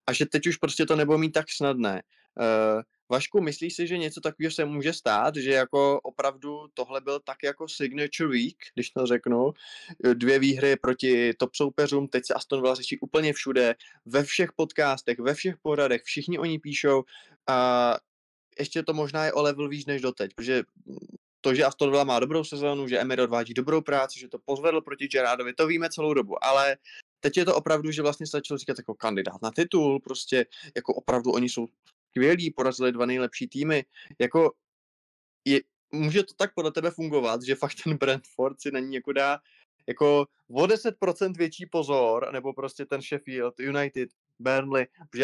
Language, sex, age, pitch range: Czech, male, 20-39, 130-155 Hz